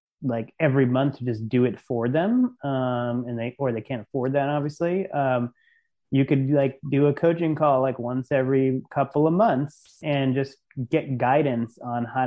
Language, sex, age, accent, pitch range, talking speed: English, male, 30-49, American, 120-145 Hz, 185 wpm